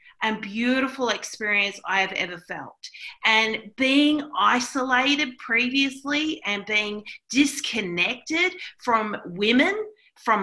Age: 40-59